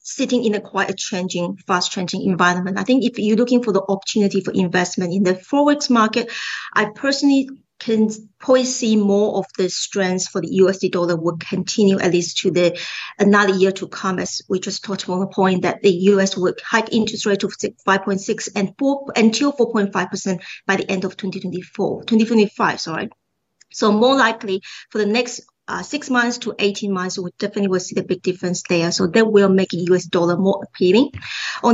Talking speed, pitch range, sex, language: 200 wpm, 190-230 Hz, female, English